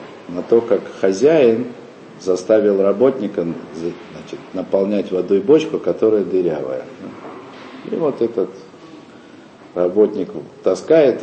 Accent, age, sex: native, 50-69, male